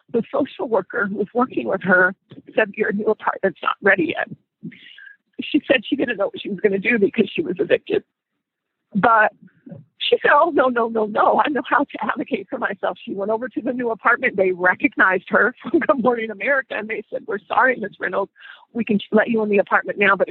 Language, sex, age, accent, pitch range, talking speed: English, female, 40-59, American, 220-290 Hz, 220 wpm